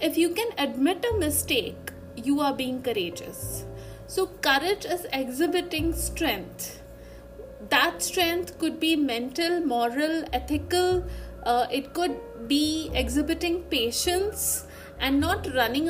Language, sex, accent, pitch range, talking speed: English, female, Indian, 270-345 Hz, 115 wpm